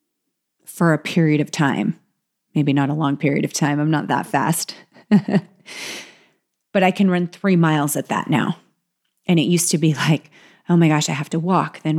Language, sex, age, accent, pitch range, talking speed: English, female, 30-49, American, 150-185 Hz, 195 wpm